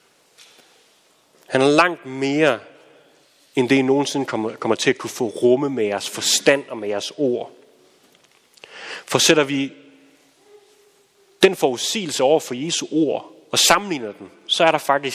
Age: 30-49